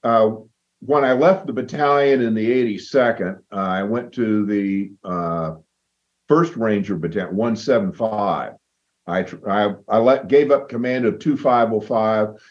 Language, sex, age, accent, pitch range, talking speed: English, male, 50-69, American, 90-115 Hz, 135 wpm